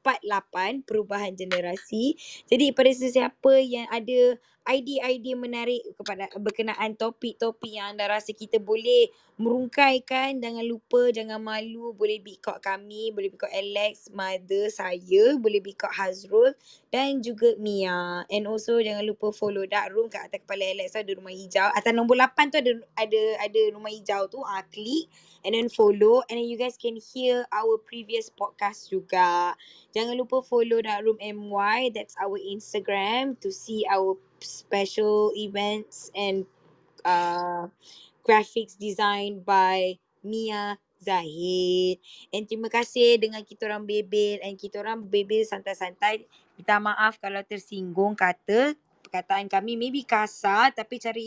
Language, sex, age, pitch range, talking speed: Malay, female, 20-39, 200-235 Hz, 140 wpm